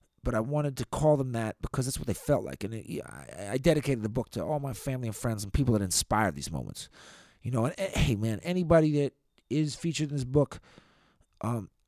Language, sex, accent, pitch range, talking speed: English, male, American, 105-145 Hz, 220 wpm